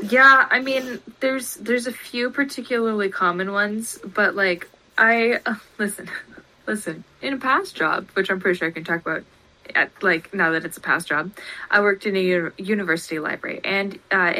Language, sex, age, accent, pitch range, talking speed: English, female, 20-39, American, 175-230 Hz, 185 wpm